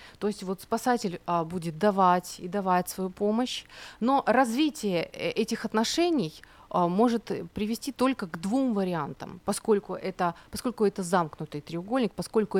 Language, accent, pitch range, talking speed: Ukrainian, native, 175-240 Hz, 140 wpm